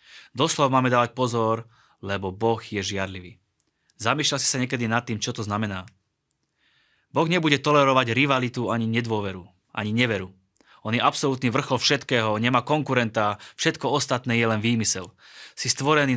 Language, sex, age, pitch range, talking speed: Slovak, male, 20-39, 110-135 Hz, 145 wpm